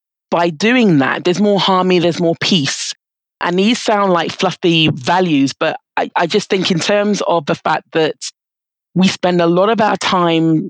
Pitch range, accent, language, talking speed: 155-185 Hz, British, English, 185 wpm